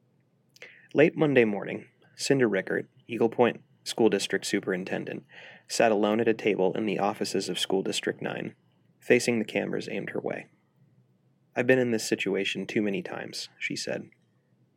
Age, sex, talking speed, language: 30-49, male, 155 wpm, English